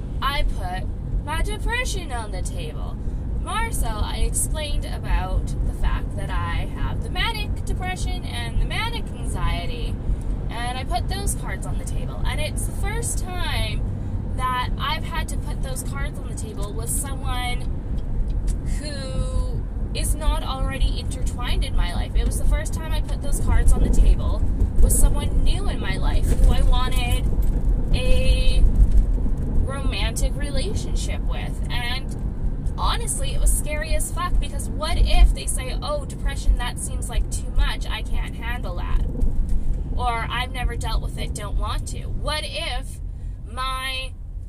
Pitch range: 80-100 Hz